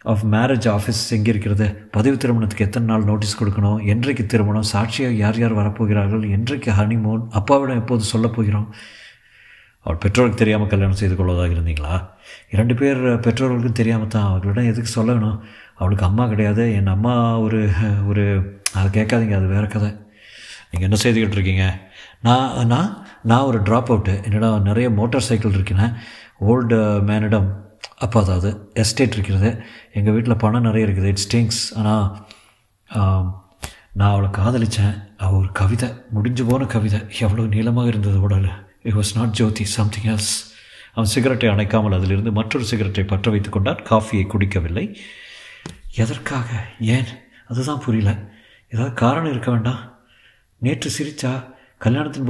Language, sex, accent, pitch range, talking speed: Tamil, male, native, 105-120 Hz, 135 wpm